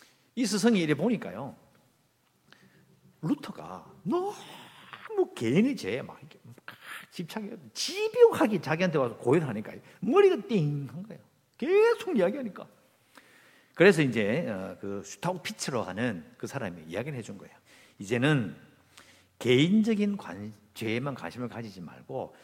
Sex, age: male, 50-69